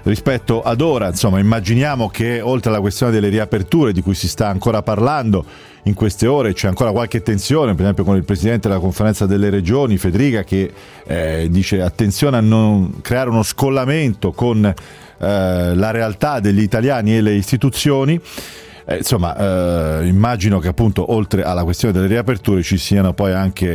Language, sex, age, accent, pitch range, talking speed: Italian, male, 40-59, native, 95-120 Hz, 170 wpm